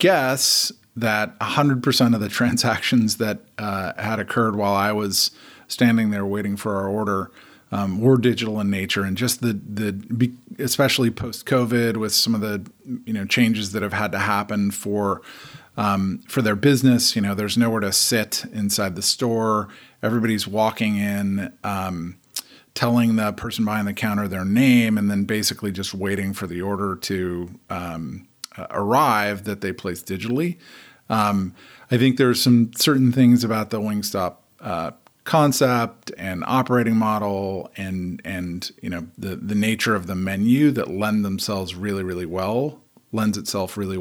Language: English